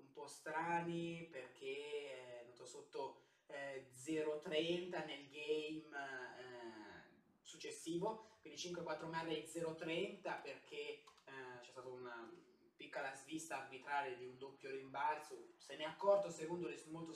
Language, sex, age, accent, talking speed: Italian, male, 20-39, native, 130 wpm